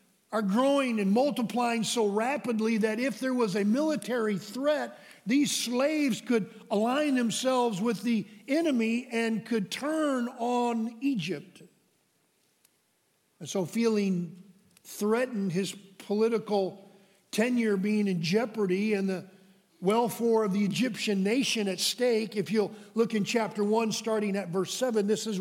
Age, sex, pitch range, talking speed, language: 50-69, male, 205-250 Hz, 135 wpm, English